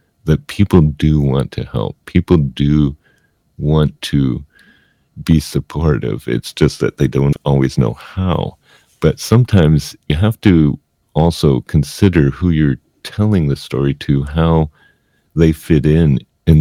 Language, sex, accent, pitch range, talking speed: English, male, American, 70-75 Hz, 135 wpm